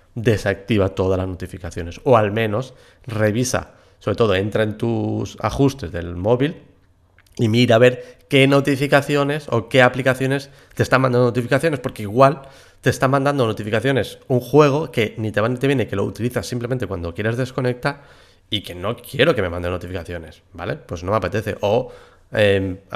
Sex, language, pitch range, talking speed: male, Spanish, 100-125 Hz, 165 wpm